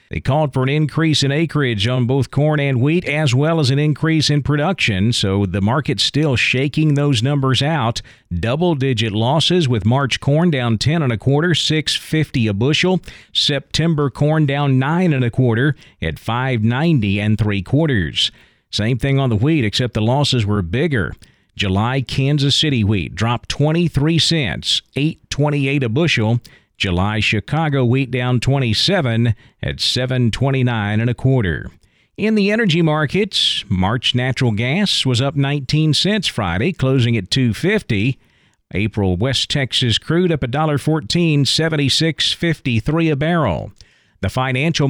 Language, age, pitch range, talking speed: English, 40-59, 120-155 Hz, 155 wpm